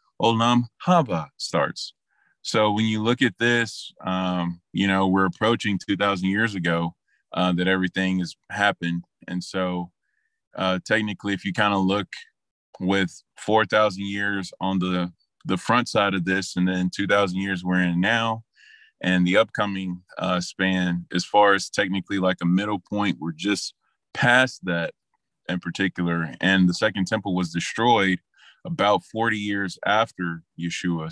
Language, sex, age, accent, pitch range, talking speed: English, male, 20-39, American, 90-105 Hz, 155 wpm